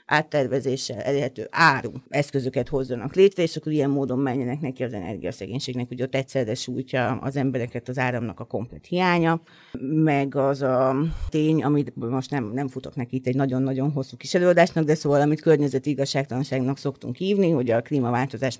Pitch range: 125-150 Hz